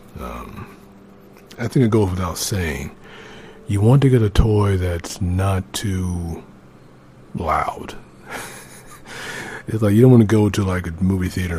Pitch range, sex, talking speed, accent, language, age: 85-100 Hz, male, 150 wpm, American, English, 50-69